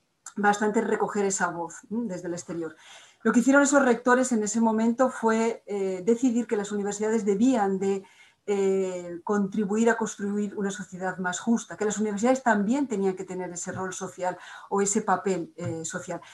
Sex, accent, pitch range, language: female, Spanish, 180-215 Hz, Spanish